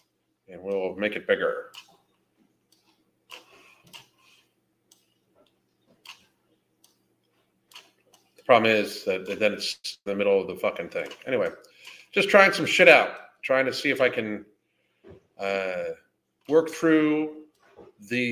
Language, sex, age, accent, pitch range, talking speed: English, male, 40-59, American, 115-175 Hz, 110 wpm